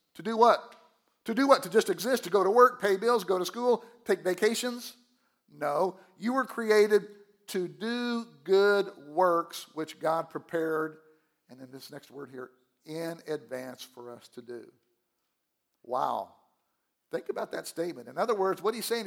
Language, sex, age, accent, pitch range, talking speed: English, male, 50-69, American, 145-220 Hz, 170 wpm